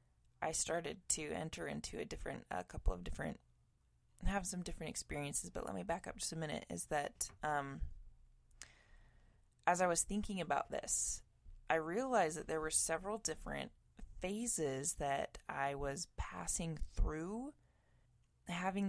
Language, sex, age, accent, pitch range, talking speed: English, female, 20-39, American, 140-175 Hz, 145 wpm